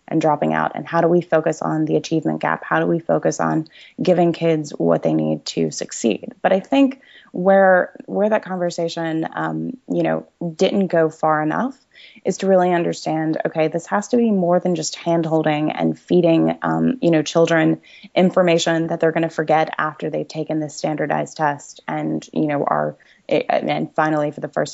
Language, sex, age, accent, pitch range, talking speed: English, female, 20-39, American, 150-180 Hz, 190 wpm